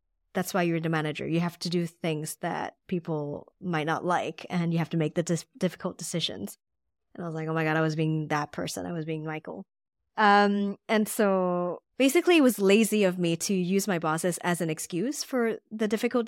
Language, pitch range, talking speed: English, 170-225 Hz, 215 wpm